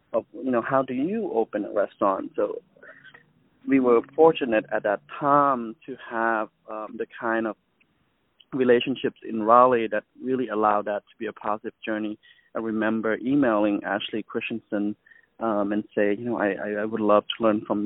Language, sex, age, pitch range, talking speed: English, male, 30-49, 105-130 Hz, 170 wpm